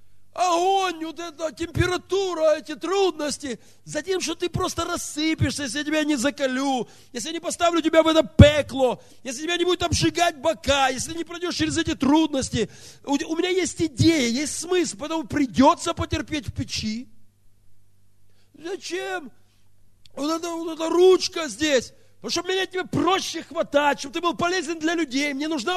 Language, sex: Russian, male